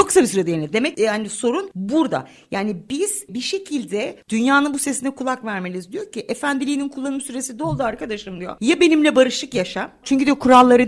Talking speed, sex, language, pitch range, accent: 170 wpm, female, Turkish, 195-265 Hz, native